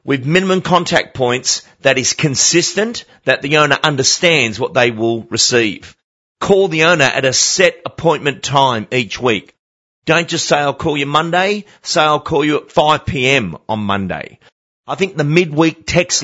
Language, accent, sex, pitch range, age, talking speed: English, Australian, male, 125-170 Hz, 40-59, 170 wpm